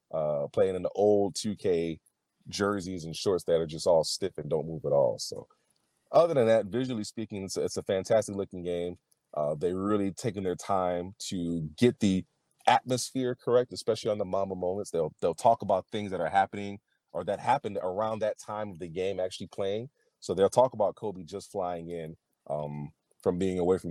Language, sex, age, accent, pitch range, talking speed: English, male, 30-49, American, 85-105 Hz, 200 wpm